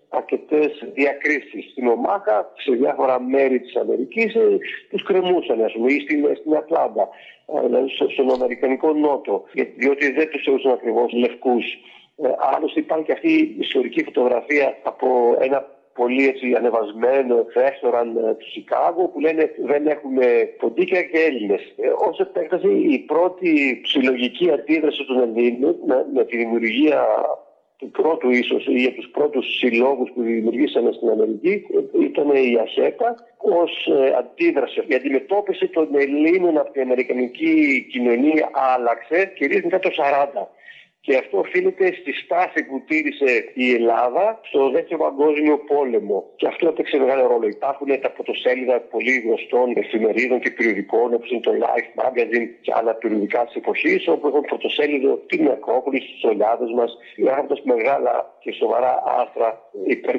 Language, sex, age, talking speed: Greek, male, 50-69, 140 wpm